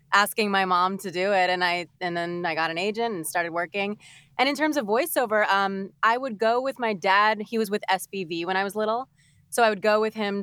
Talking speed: 250 wpm